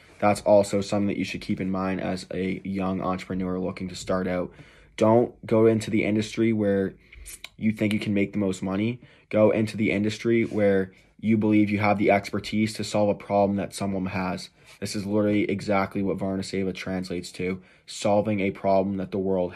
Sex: male